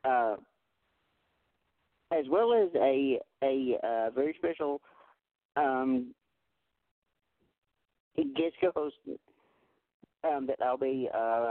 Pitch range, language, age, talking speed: 125-150 Hz, English, 50-69, 95 wpm